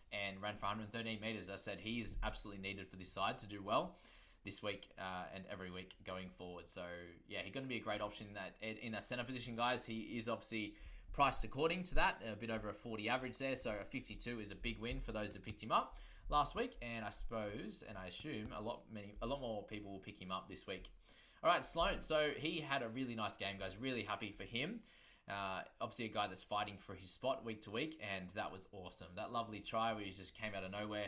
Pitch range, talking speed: 95-115 Hz, 250 wpm